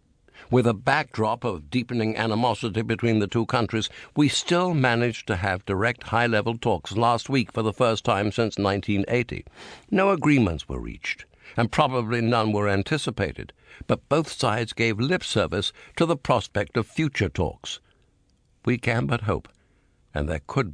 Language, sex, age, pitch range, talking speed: English, male, 60-79, 105-130 Hz, 155 wpm